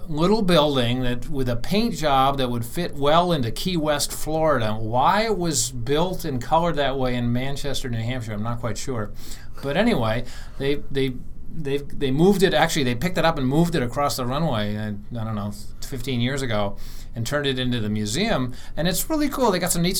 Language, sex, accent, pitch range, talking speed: English, male, American, 120-150 Hz, 210 wpm